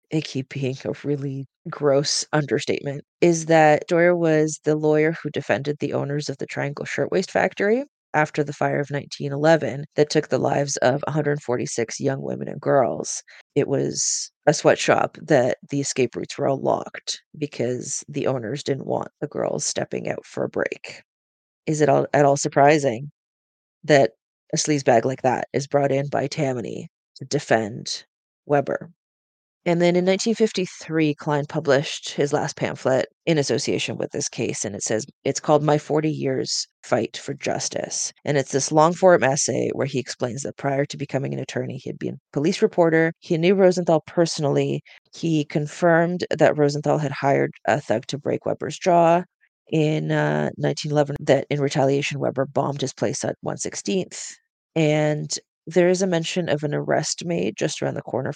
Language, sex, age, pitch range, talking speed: English, female, 30-49, 135-160 Hz, 170 wpm